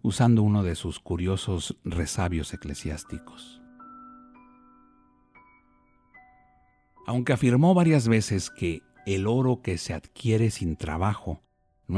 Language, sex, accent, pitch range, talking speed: Spanish, male, Mexican, 90-125 Hz, 100 wpm